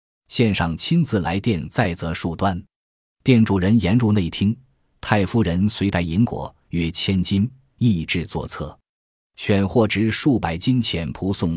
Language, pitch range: Chinese, 85-115 Hz